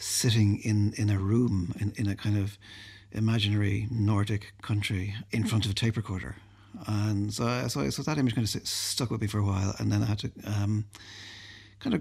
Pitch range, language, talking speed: 100-120 Hz, English, 205 wpm